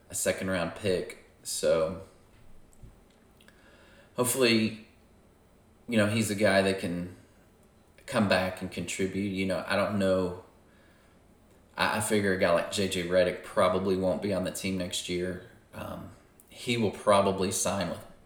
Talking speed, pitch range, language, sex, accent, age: 140 wpm, 90-105 Hz, English, male, American, 30-49